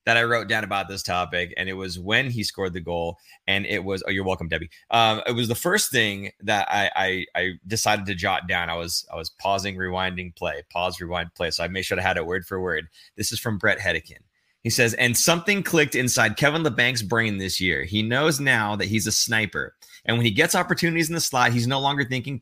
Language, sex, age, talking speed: English, male, 30-49, 245 wpm